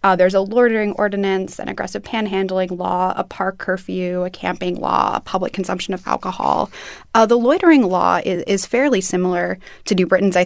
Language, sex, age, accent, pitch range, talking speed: English, female, 20-39, American, 180-200 Hz, 180 wpm